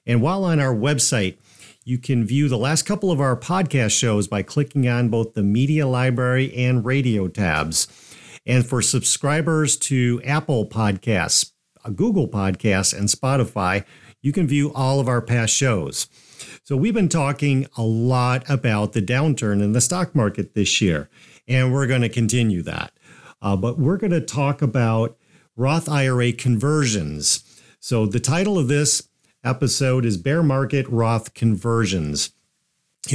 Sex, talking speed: male, 155 wpm